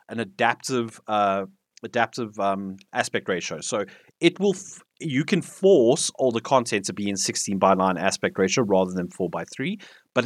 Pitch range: 105-145 Hz